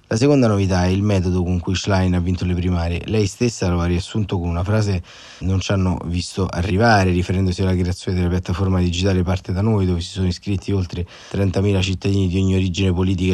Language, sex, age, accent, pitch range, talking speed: Italian, male, 30-49, native, 90-105 Hz, 205 wpm